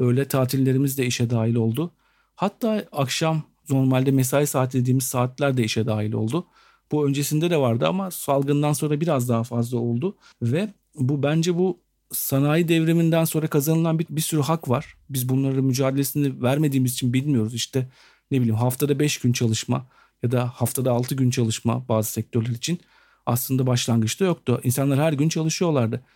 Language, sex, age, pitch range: Turkish, male, 50-69, 125-150 Hz